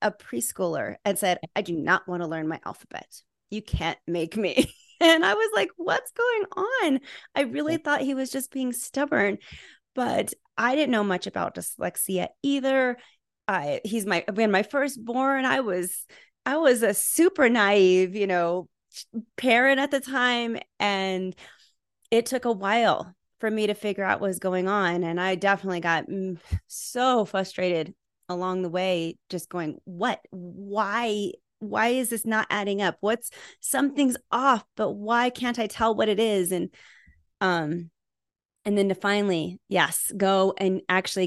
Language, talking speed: English, 165 wpm